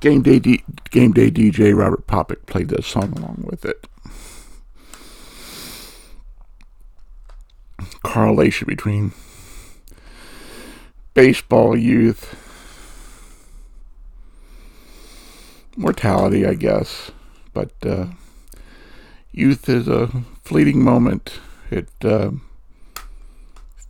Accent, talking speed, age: American, 75 wpm, 60-79